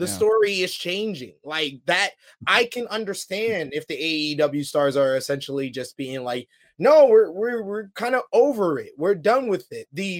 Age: 20-39